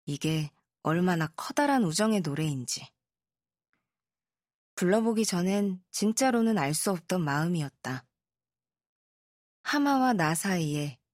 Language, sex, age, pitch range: Korean, female, 20-39, 145-205 Hz